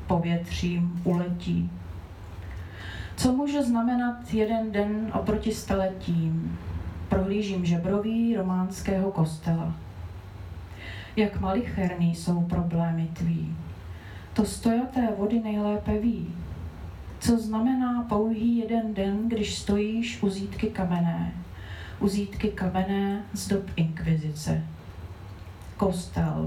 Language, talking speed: Czech, 90 wpm